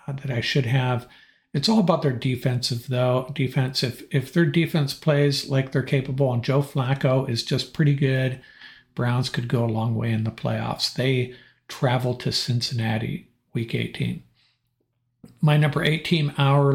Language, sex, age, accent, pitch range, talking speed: English, male, 50-69, American, 125-140 Hz, 160 wpm